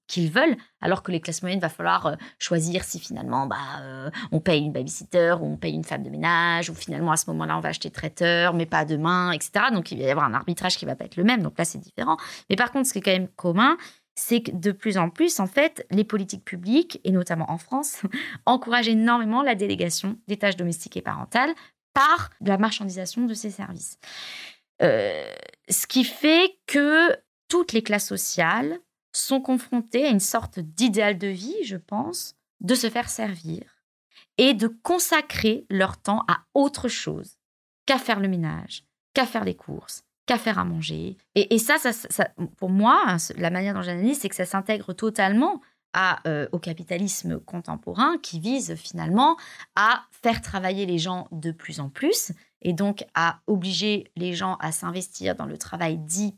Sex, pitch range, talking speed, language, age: female, 175-240 Hz, 195 wpm, French, 20-39